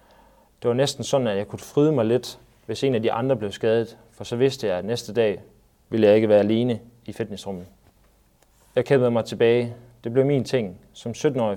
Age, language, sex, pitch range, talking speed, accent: 30-49, Danish, male, 105-120 Hz, 215 wpm, native